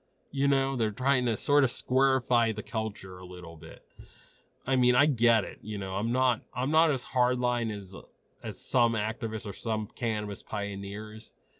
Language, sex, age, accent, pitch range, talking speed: English, male, 30-49, American, 110-130 Hz, 175 wpm